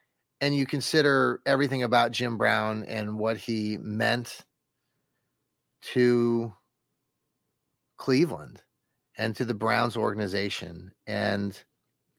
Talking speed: 95 wpm